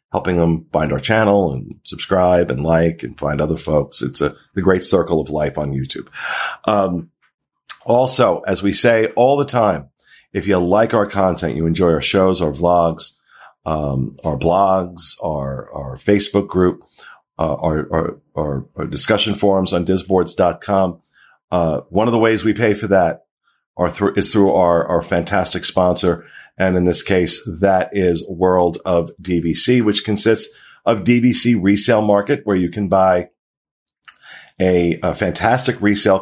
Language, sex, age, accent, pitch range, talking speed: English, male, 40-59, American, 85-105 Hz, 160 wpm